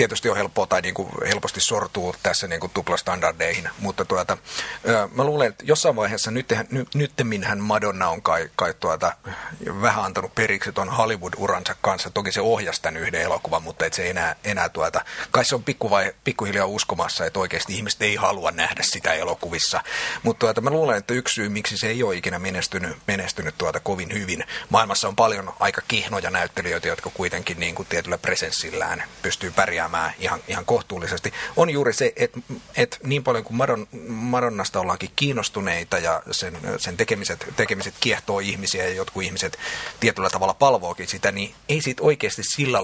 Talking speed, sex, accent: 170 wpm, male, native